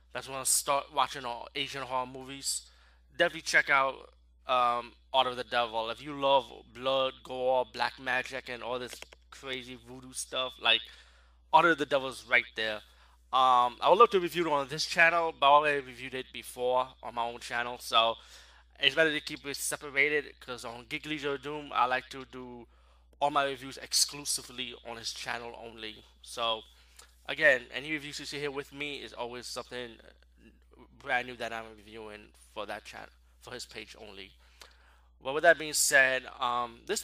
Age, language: 20-39, English